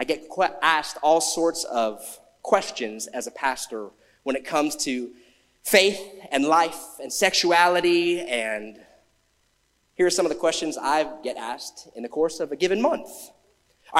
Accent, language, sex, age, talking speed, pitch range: American, English, male, 30-49, 160 wpm, 180-235 Hz